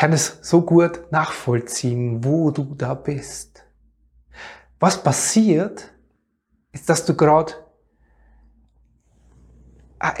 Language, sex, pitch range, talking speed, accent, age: German, male, 150-195 Hz, 95 wpm, German, 30-49